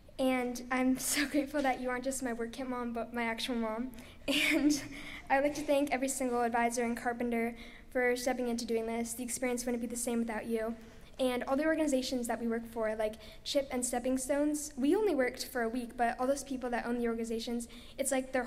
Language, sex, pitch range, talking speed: English, female, 235-260 Hz, 225 wpm